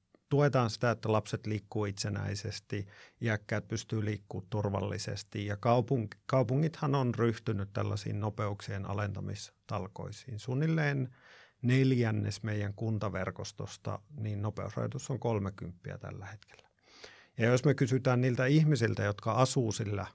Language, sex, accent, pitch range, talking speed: Finnish, male, native, 105-130 Hz, 105 wpm